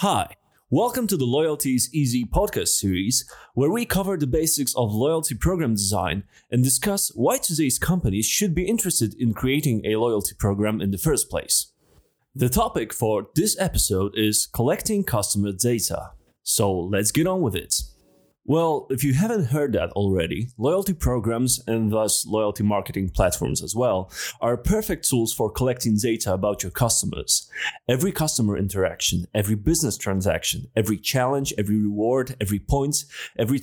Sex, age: male, 30-49